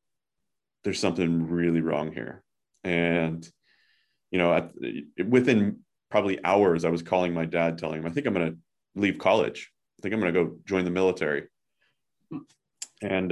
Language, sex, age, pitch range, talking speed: English, male, 30-49, 85-95 Hz, 160 wpm